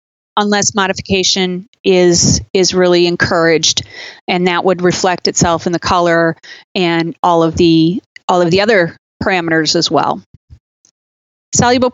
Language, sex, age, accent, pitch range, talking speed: English, female, 30-49, American, 175-205 Hz, 130 wpm